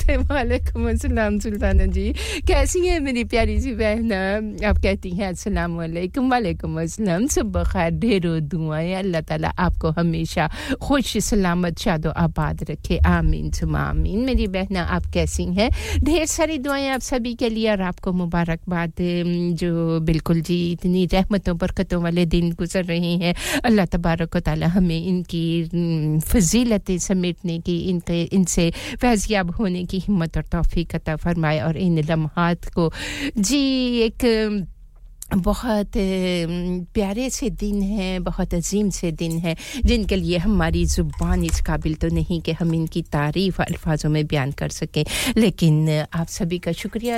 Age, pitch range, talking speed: 50-69, 165-205 Hz, 120 wpm